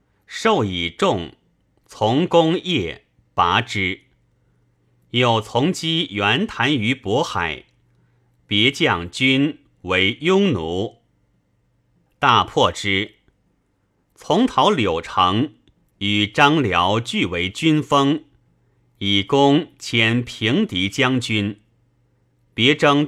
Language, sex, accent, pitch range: Chinese, male, native, 95-145 Hz